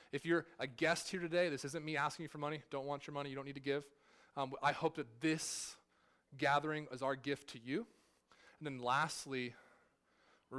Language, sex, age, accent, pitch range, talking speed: English, male, 20-39, American, 130-155 Hz, 210 wpm